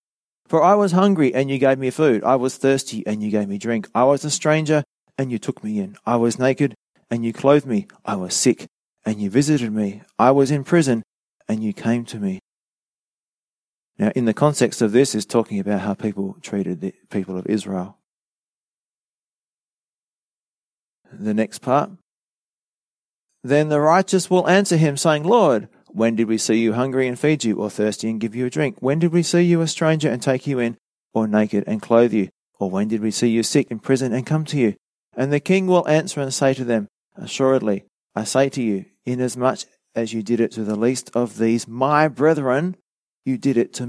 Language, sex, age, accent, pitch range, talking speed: English, male, 30-49, Australian, 110-145 Hz, 205 wpm